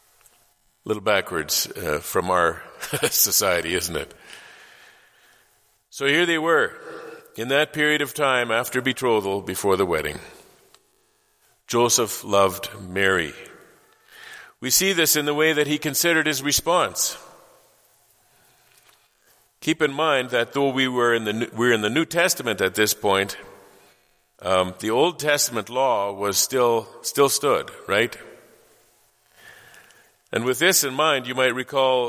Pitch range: 105-155 Hz